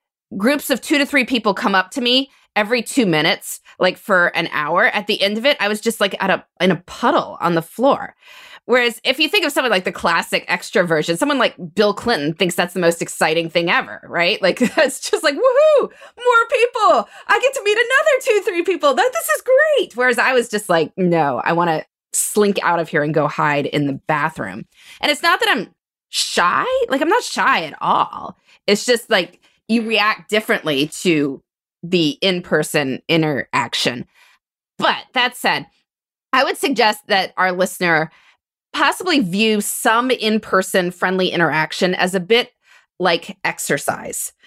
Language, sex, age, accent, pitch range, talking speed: English, female, 20-39, American, 180-285 Hz, 185 wpm